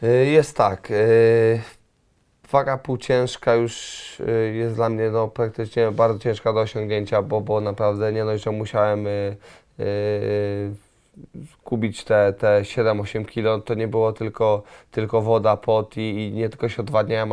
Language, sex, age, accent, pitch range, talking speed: English, male, 20-39, Polish, 105-115 Hz, 135 wpm